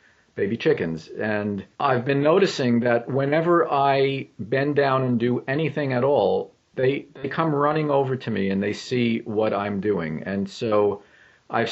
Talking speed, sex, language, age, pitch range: 165 wpm, male, English, 50-69, 110-145 Hz